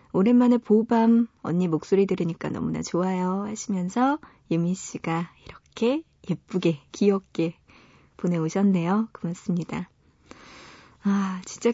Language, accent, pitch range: Korean, native, 175-235 Hz